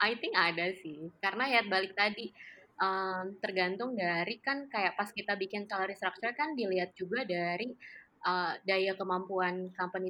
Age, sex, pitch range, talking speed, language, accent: 20-39, female, 180-215 Hz, 155 wpm, Indonesian, native